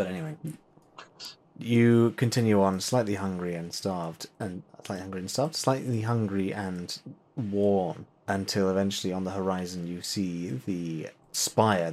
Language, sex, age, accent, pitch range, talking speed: English, male, 30-49, British, 85-110 Hz, 135 wpm